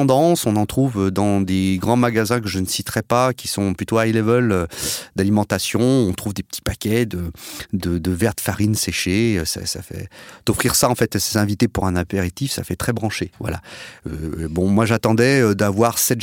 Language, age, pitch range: French, 30-49, 95-125 Hz